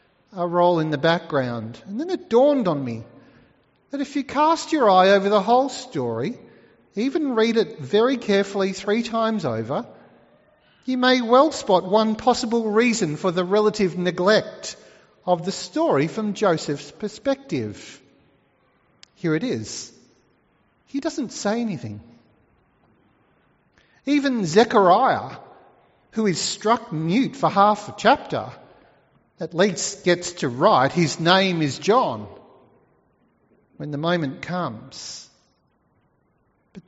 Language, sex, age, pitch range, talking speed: English, male, 40-59, 160-225 Hz, 125 wpm